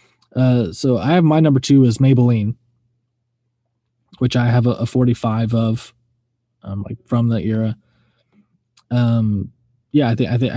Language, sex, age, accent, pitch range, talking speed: English, male, 20-39, American, 115-135 Hz, 155 wpm